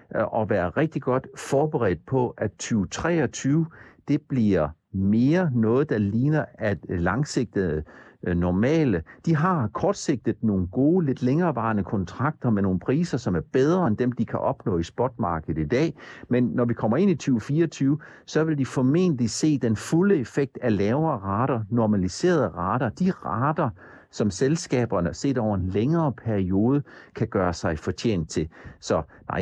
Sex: male